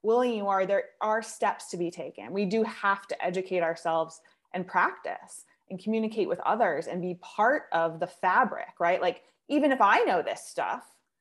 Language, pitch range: English, 180-235 Hz